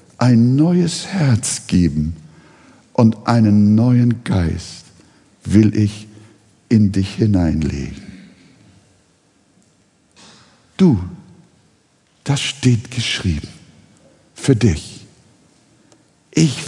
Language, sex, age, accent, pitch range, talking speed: German, male, 60-79, German, 95-120 Hz, 70 wpm